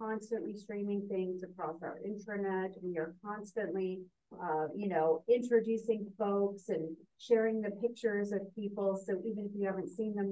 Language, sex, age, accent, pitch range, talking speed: English, female, 40-59, American, 180-215 Hz, 155 wpm